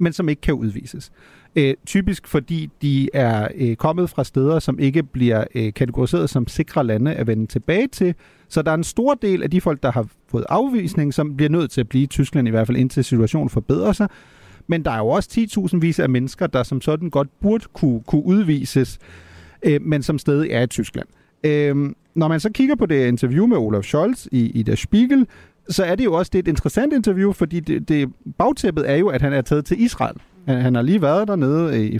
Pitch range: 125-175 Hz